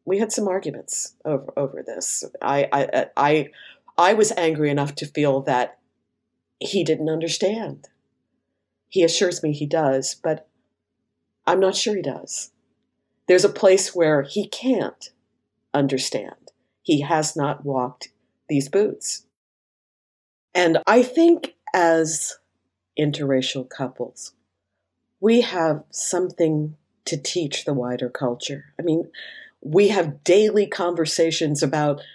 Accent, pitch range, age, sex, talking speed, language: American, 150-215 Hz, 50-69, female, 120 wpm, English